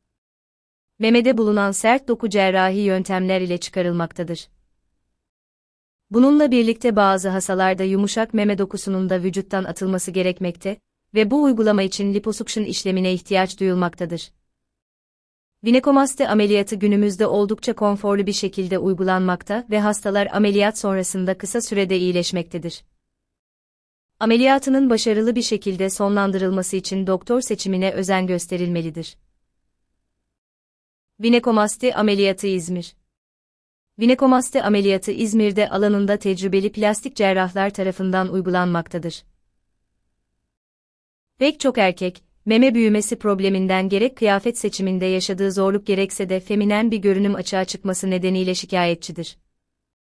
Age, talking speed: 30-49, 100 wpm